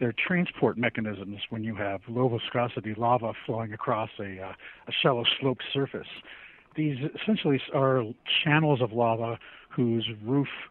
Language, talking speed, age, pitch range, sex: English, 140 wpm, 50-69, 110-130 Hz, male